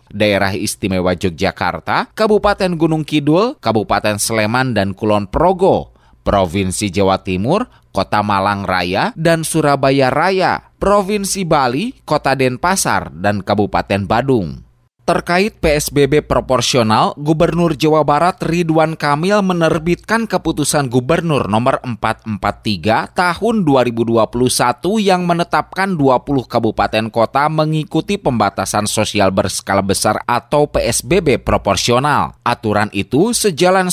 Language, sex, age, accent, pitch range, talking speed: Indonesian, male, 20-39, native, 105-175 Hz, 100 wpm